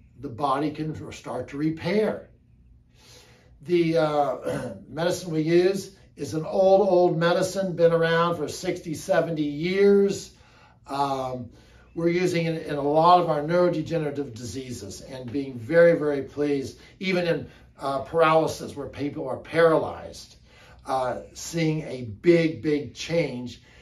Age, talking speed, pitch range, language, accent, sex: 60-79, 130 wpm, 135-175 Hz, English, American, male